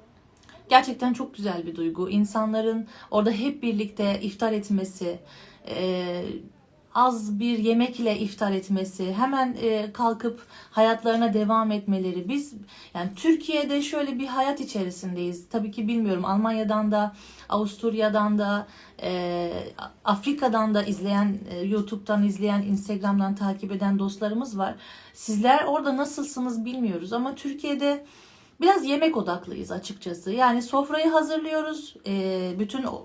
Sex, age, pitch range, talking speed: female, 40-59, 200-265 Hz, 105 wpm